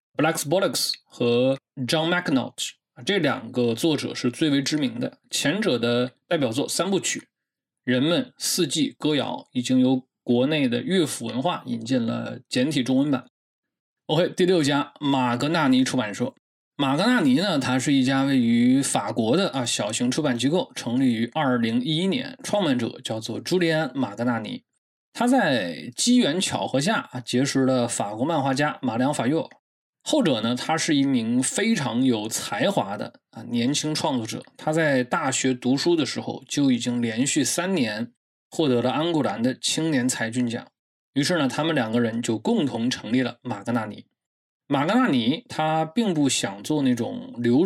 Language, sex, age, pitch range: Chinese, male, 20-39, 120-165 Hz